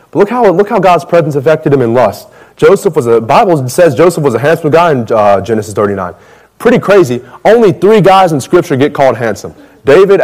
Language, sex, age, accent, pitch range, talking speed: English, male, 30-49, American, 135-175 Hz, 205 wpm